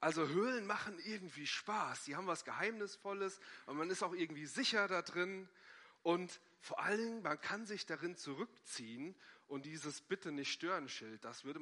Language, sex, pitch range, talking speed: German, male, 150-200 Hz, 155 wpm